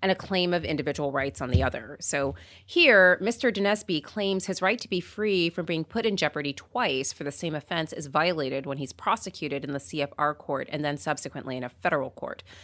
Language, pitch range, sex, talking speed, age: English, 150-205 Hz, female, 215 wpm, 30-49